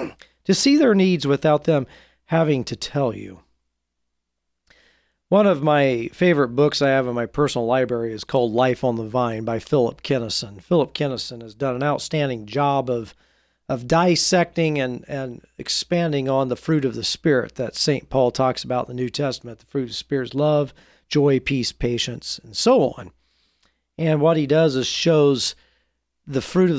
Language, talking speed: English, 180 wpm